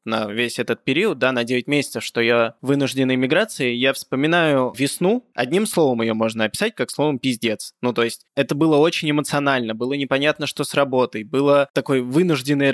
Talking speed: 180 wpm